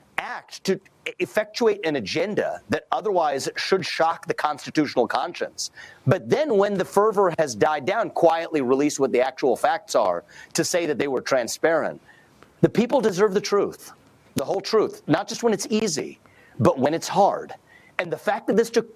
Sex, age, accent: male, 40-59, American